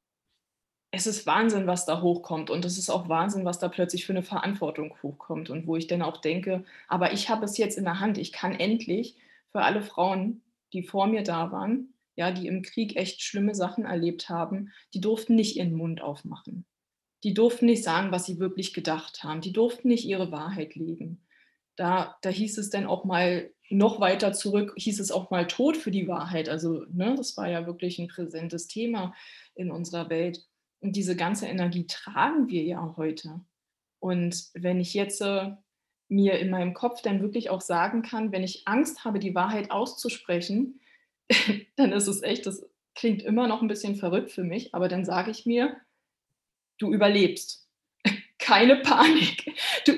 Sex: female